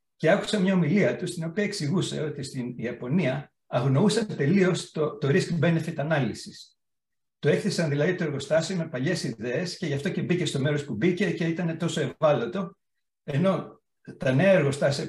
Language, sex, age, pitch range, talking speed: Greek, male, 60-79, 130-180 Hz, 165 wpm